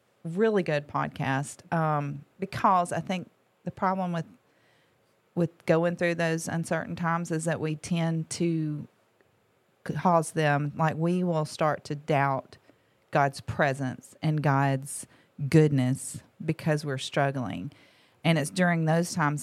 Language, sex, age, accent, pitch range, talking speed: English, female, 40-59, American, 145-175 Hz, 130 wpm